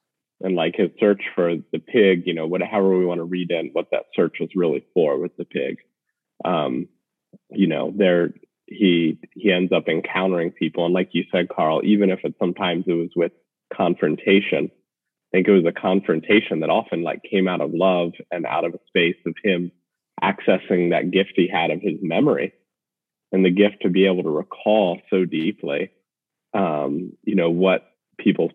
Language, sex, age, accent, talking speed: English, male, 30-49, American, 190 wpm